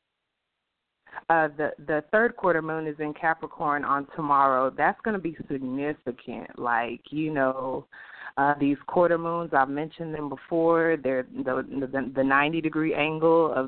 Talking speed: 155 wpm